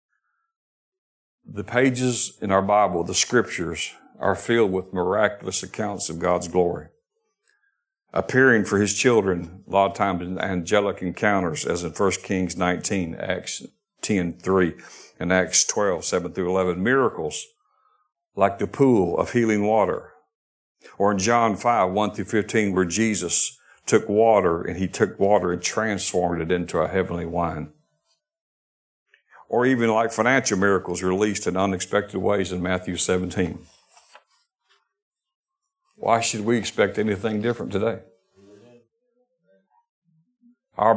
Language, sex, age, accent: English, male, 50-69, American